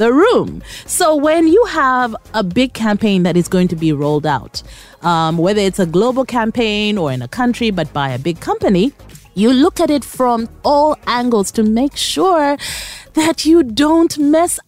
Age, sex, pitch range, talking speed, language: 30-49, female, 175-275 Hz, 185 wpm, English